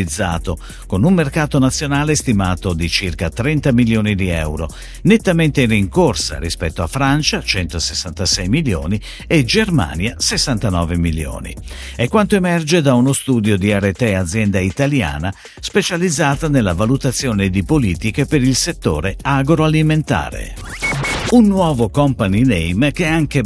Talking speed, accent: 125 wpm, native